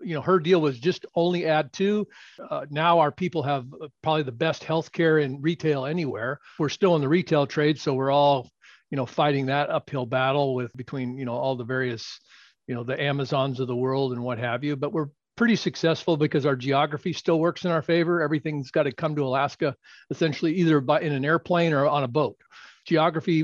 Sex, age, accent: male, 40-59, American